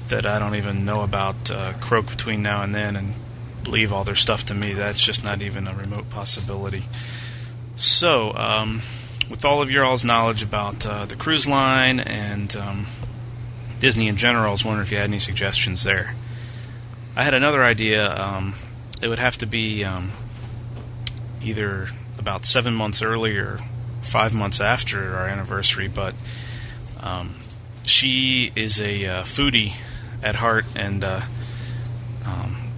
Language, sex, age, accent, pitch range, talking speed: English, male, 30-49, American, 105-120 Hz, 160 wpm